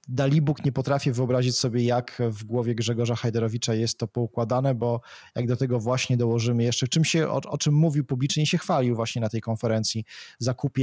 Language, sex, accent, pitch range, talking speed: Polish, male, native, 115-135 Hz, 190 wpm